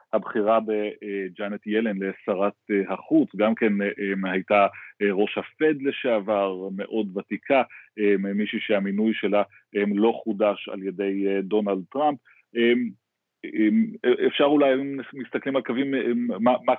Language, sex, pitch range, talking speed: Hebrew, male, 100-115 Hz, 105 wpm